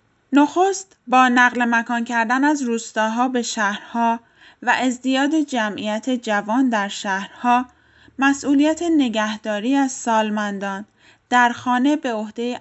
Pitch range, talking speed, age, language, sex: 210-240 Hz, 110 wpm, 10-29, Persian, female